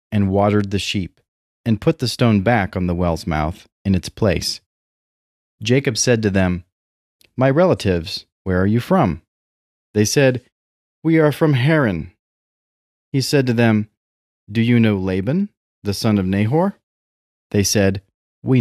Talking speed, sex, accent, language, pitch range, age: 150 wpm, male, American, English, 90-135 Hz, 30-49